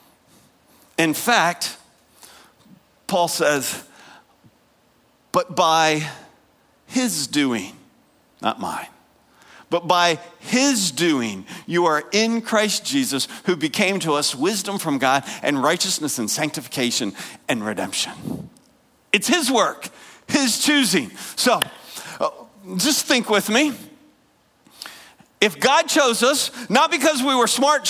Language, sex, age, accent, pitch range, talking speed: English, male, 50-69, American, 180-290 Hz, 110 wpm